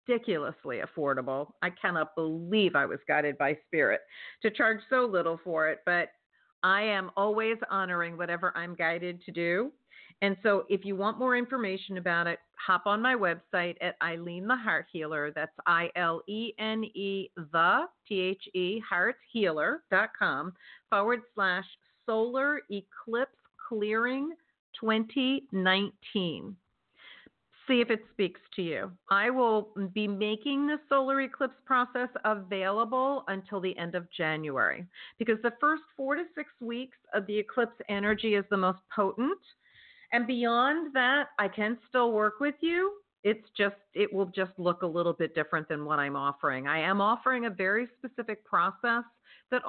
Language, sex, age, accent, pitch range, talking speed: English, female, 50-69, American, 180-245 Hz, 145 wpm